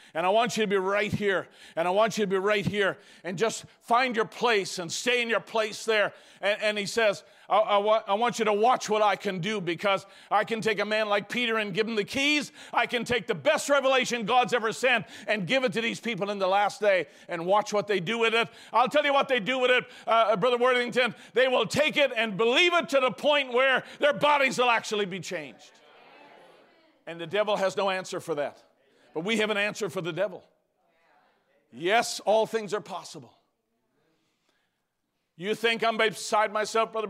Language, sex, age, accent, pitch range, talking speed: English, male, 50-69, American, 205-245 Hz, 220 wpm